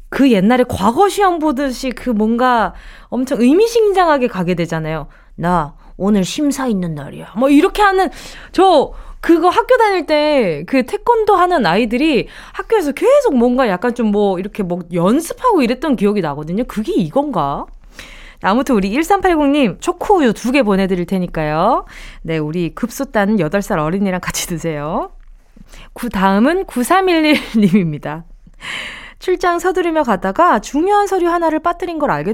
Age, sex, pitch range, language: 20-39, female, 190-310 Hz, Korean